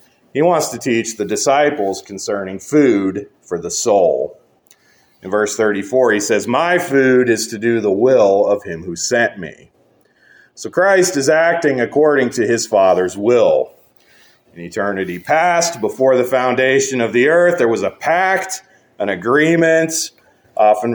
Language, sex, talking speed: English, male, 150 wpm